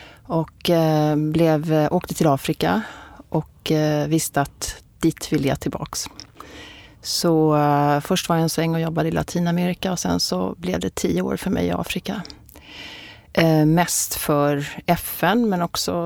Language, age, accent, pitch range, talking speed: Swedish, 40-59, native, 155-195 Hz, 140 wpm